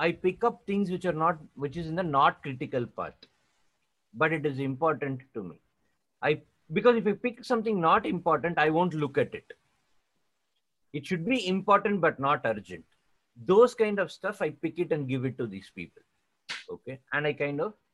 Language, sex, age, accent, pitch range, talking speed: English, male, 50-69, Indian, 115-180 Hz, 195 wpm